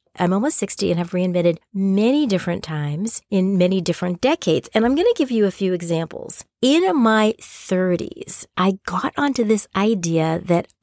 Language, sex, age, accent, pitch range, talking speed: English, female, 40-59, American, 165-225 Hz, 170 wpm